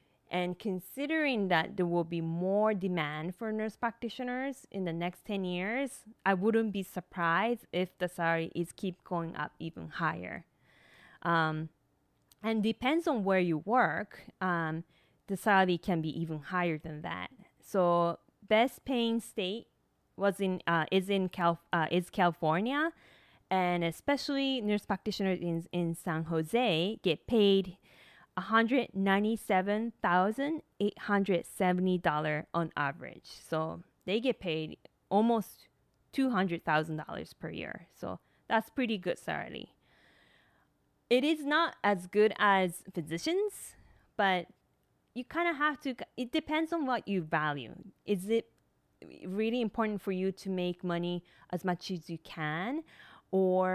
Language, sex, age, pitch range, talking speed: English, female, 20-39, 170-225 Hz, 130 wpm